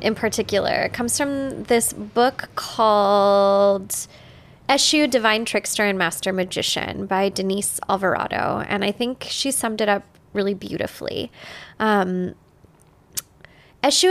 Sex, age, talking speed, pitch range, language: female, 20-39, 115 wpm, 205-250 Hz, English